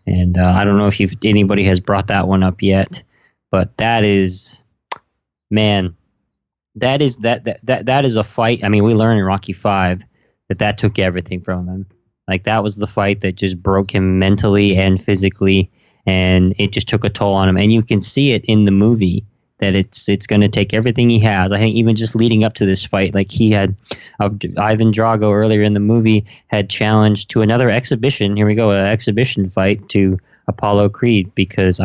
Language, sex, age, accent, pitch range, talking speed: English, male, 20-39, American, 95-110 Hz, 210 wpm